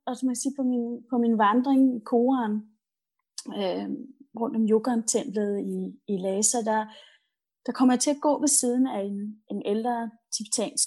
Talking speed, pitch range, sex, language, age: 165 wpm, 220-275 Hz, female, Danish, 30-49